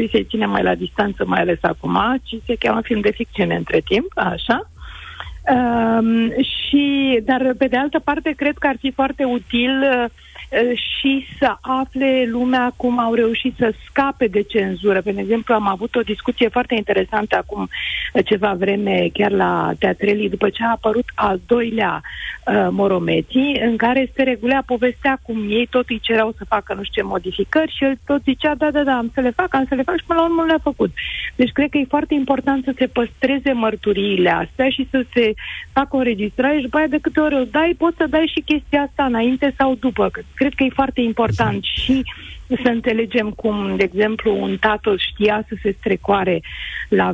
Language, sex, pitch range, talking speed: Romanian, female, 210-270 Hz, 190 wpm